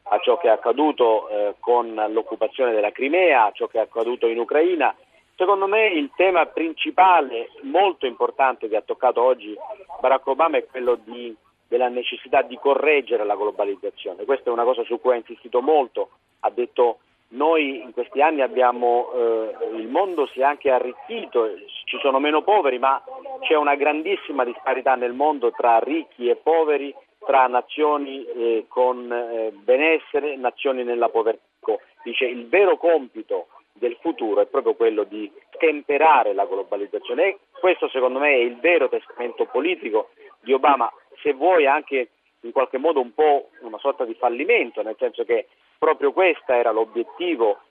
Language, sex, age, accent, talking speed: Italian, male, 40-59, native, 160 wpm